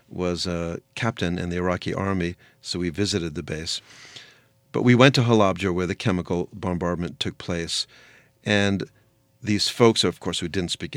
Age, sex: 40-59, male